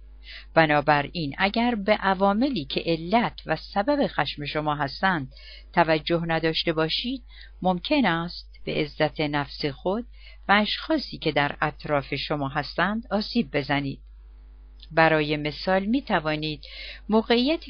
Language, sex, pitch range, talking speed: Persian, female, 145-195 Hz, 110 wpm